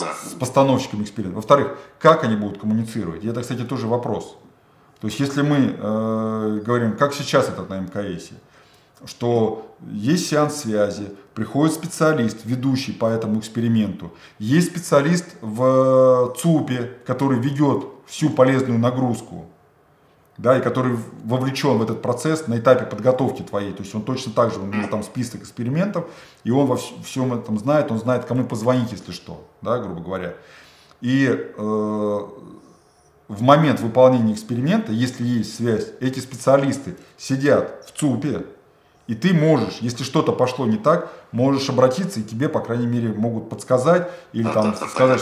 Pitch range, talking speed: 110-135 Hz, 150 wpm